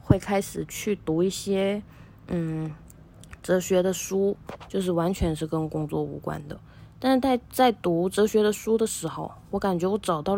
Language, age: Chinese, 20-39